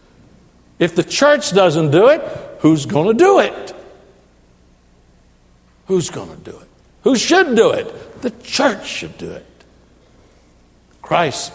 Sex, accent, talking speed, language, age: male, American, 125 wpm, English, 60-79